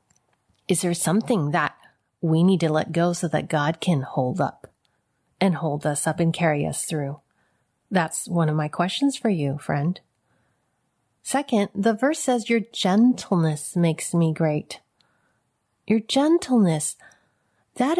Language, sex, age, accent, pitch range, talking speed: English, female, 30-49, American, 170-240 Hz, 145 wpm